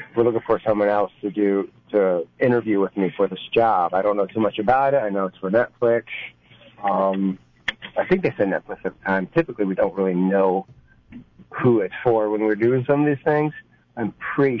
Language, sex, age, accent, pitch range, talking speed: English, male, 40-59, American, 105-135 Hz, 215 wpm